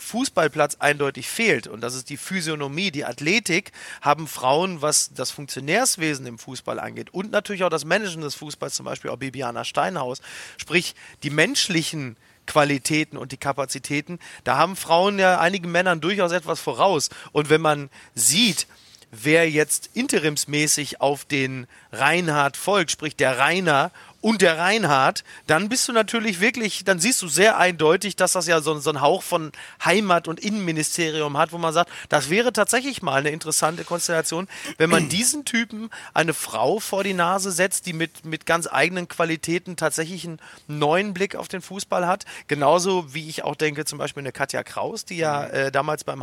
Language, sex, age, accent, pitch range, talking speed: German, male, 30-49, German, 145-185 Hz, 175 wpm